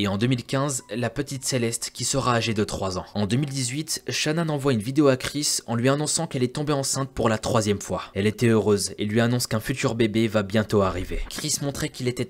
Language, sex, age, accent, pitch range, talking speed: French, male, 20-39, French, 105-130 Hz, 230 wpm